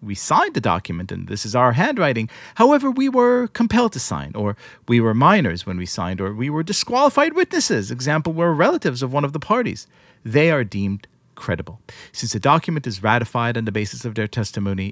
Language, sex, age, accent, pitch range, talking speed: English, male, 40-59, American, 105-145 Hz, 200 wpm